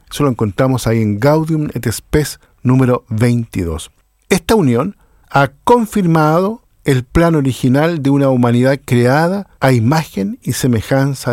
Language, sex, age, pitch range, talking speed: Spanish, male, 50-69, 110-155 Hz, 130 wpm